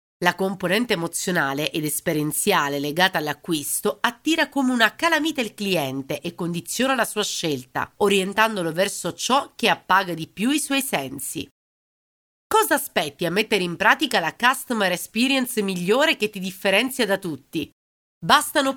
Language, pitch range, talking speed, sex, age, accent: Italian, 170-240 Hz, 140 wpm, female, 40-59, native